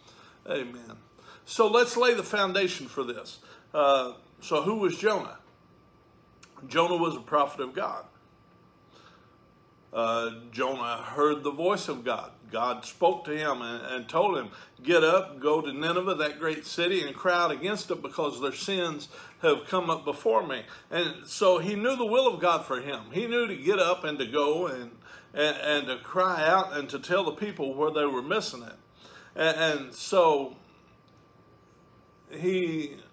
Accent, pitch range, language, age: American, 150-200 Hz, English, 50-69